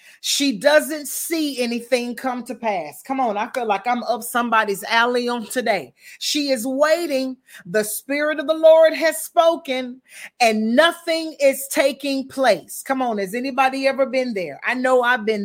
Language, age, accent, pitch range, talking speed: English, 30-49, American, 245-305 Hz, 170 wpm